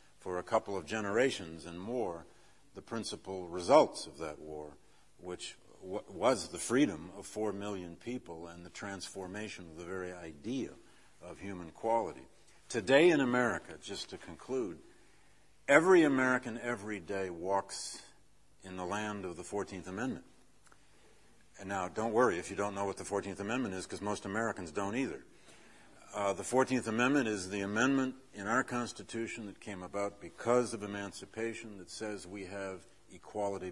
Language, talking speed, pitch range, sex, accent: English, 155 wpm, 90-115 Hz, male, American